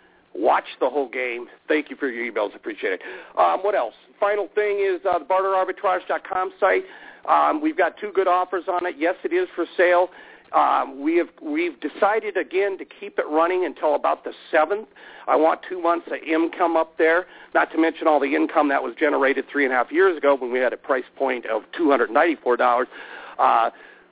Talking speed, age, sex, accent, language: 200 wpm, 50-69, male, American, English